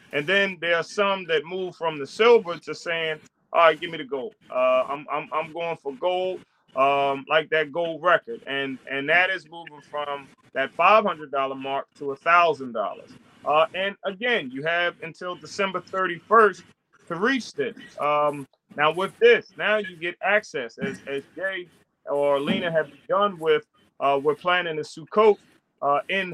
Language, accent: English, American